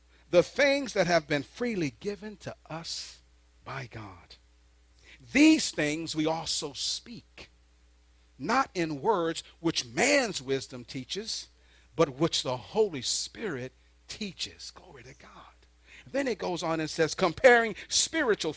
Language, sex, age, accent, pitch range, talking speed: English, male, 50-69, American, 150-215 Hz, 130 wpm